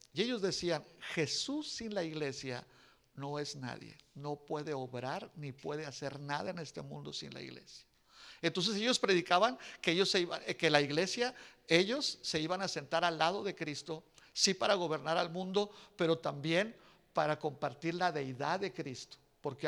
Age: 50-69